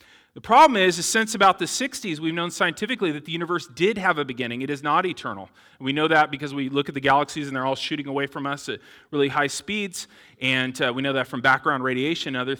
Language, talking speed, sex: English, 250 wpm, male